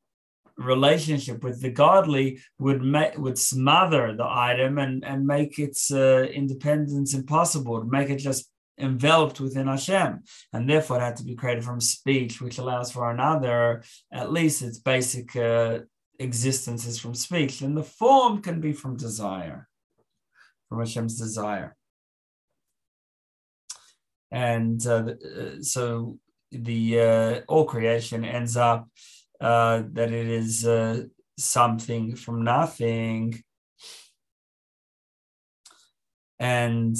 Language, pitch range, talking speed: English, 115-135 Hz, 120 wpm